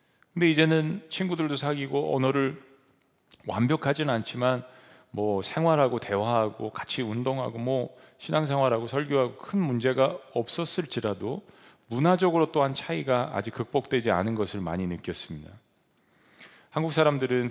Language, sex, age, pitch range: Korean, male, 40-59, 110-150 Hz